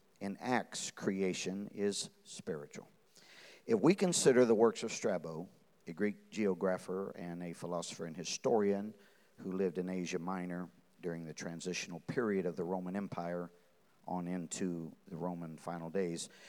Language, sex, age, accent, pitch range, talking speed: English, male, 50-69, American, 85-105 Hz, 140 wpm